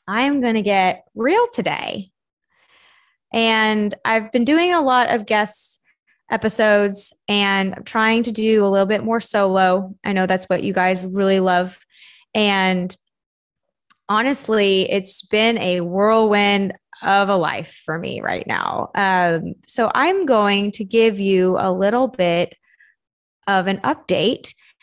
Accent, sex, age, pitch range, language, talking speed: American, female, 20-39, 185-230 Hz, English, 145 wpm